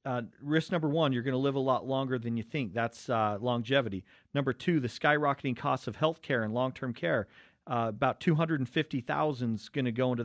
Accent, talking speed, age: American, 205 wpm, 40-59